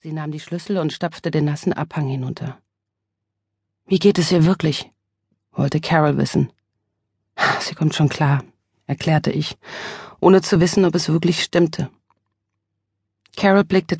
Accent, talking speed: German, 140 wpm